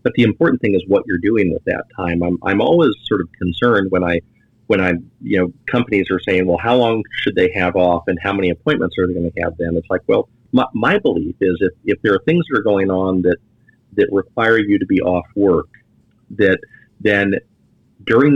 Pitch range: 90-115 Hz